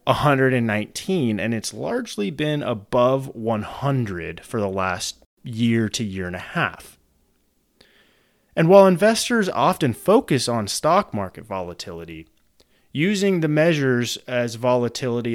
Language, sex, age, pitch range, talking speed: English, male, 30-49, 105-150 Hz, 115 wpm